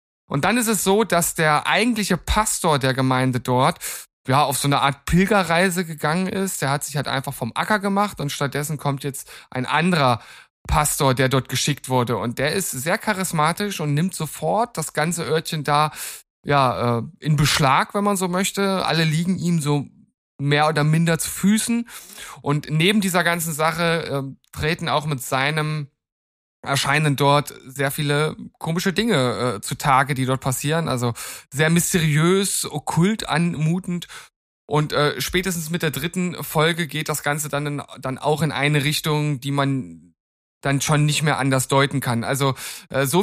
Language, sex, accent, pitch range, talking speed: German, male, German, 140-170 Hz, 170 wpm